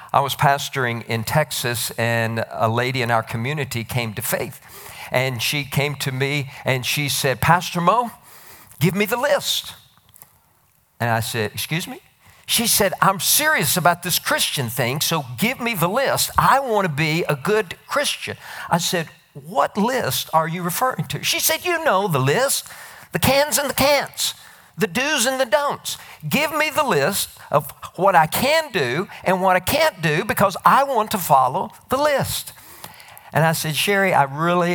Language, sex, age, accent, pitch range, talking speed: English, male, 50-69, American, 130-185 Hz, 180 wpm